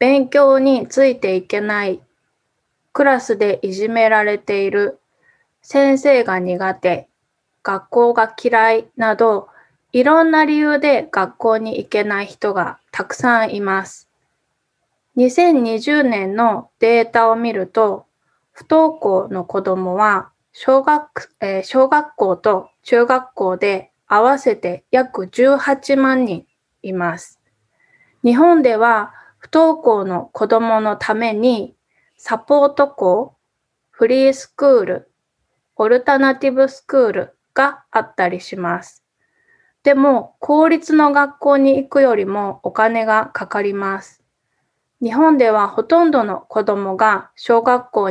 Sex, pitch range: female, 200-275 Hz